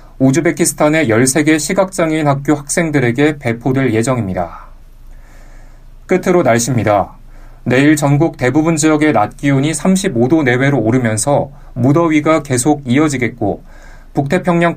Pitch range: 120-155 Hz